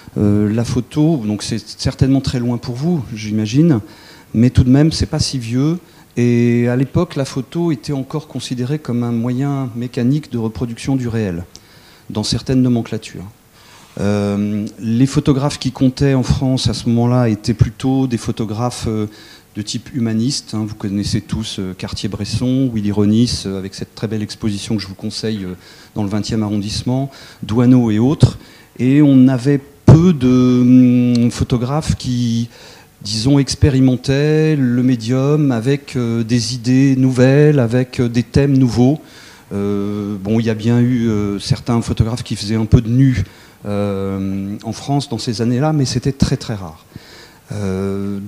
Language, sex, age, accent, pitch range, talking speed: French, male, 40-59, French, 110-135 Hz, 160 wpm